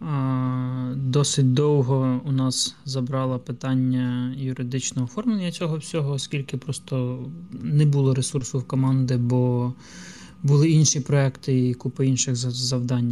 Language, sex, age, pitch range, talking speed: Ukrainian, male, 20-39, 130-155 Hz, 115 wpm